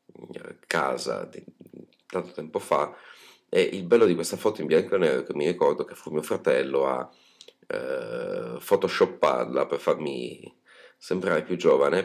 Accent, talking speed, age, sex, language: native, 155 wpm, 30-49, male, Italian